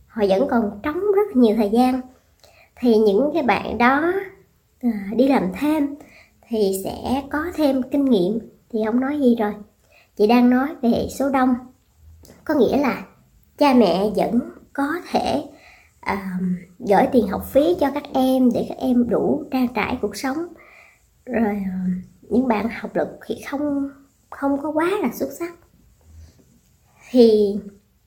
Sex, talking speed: male, 150 wpm